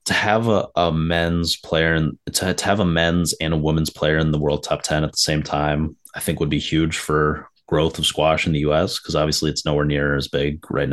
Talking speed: 245 wpm